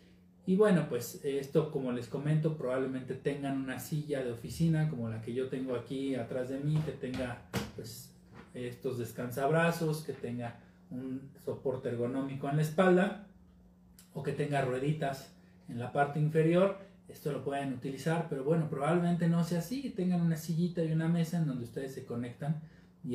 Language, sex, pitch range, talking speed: Spanish, male, 125-160 Hz, 170 wpm